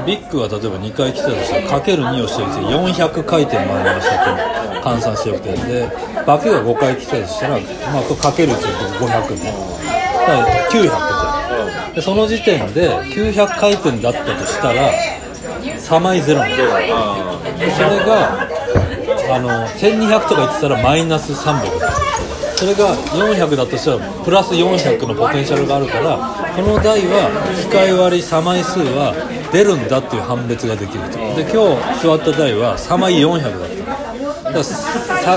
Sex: male